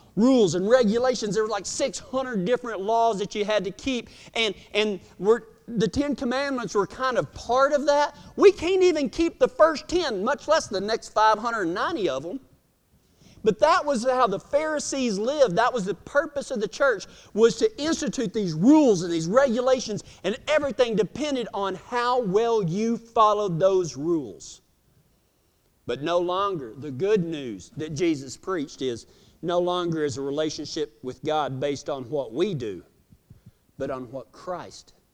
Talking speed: 165 wpm